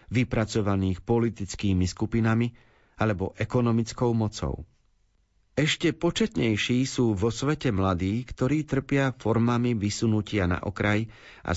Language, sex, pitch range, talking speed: Slovak, male, 95-125 Hz, 100 wpm